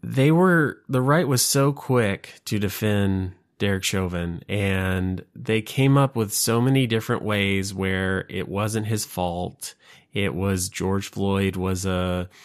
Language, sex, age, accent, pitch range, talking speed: English, male, 20-39, American, 95-110 Hz, 140 wpm